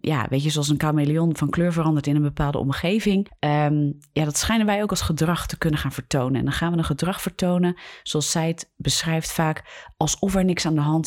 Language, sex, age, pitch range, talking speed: Dutch, female, 30-49, 145-175 Hz, 235 wpm